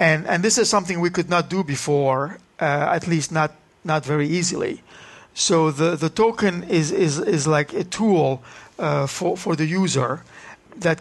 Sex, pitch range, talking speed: male, 155-190 Hz, 180 wpm